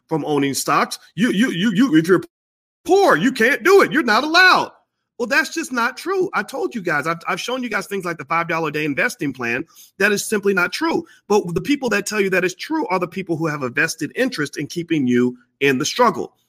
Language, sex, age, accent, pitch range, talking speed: English, male, 40-59, American, 135-200 Hz, 230 wpm